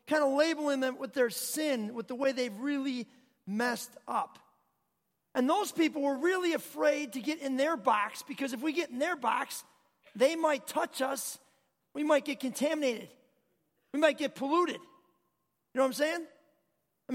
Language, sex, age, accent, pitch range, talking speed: English, male, 40-59, American, 250-295 Hz, 175 wpm